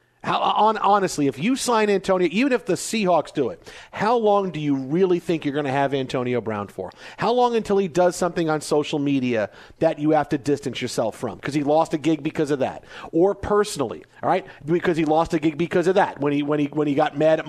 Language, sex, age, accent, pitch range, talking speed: English, male, 40-59, American, 145-190 Hz, 245 wpm